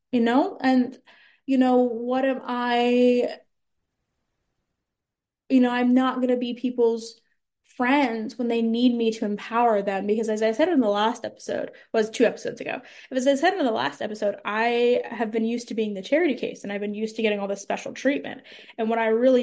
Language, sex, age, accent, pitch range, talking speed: English, female, 20-39, American, 215-260 Hz, 205 wpm